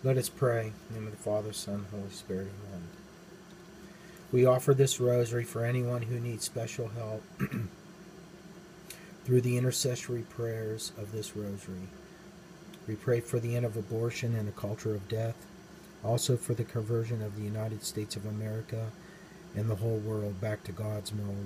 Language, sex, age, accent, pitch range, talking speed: English, male, 40-59, American, 110-170 Hz, 170 wpm